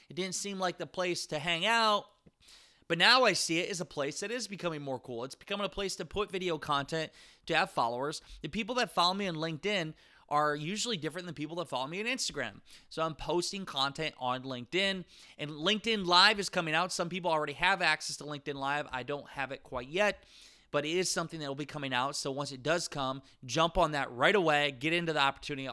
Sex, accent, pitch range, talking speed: male, American, 135-180 Hz, 230 wpm